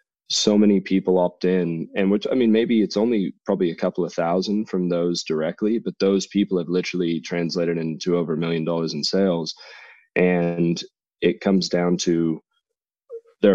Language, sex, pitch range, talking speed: English, male, 85-100 Hz, 175 wpm